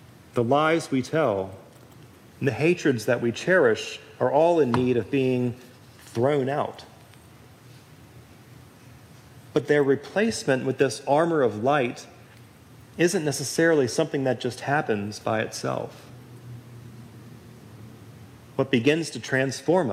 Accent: American